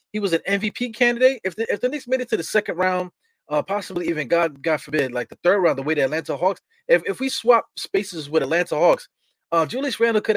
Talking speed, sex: 250 wpm, male